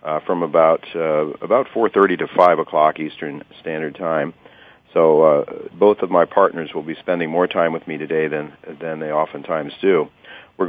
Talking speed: 185 wpm